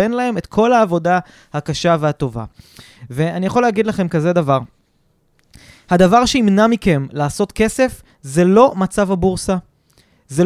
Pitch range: 165-240 Hz